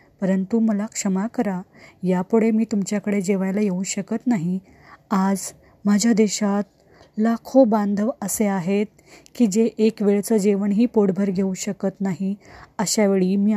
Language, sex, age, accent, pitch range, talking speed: Marathi, female, 20-39, native, 195-220 Hz, 130 wpm